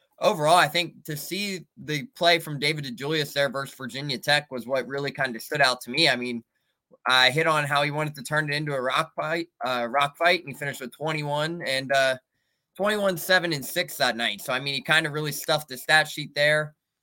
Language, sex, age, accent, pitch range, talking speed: English, male, 20-39, American, 135-165 Hz, 235 wpm